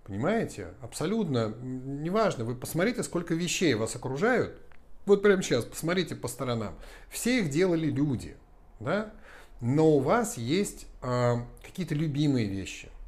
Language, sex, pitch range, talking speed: Russian, male, 115-155 Hz, 125 wpm